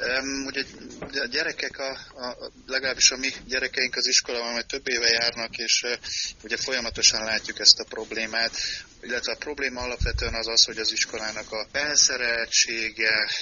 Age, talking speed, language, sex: 30-49, 160 wpm, Hungarian, male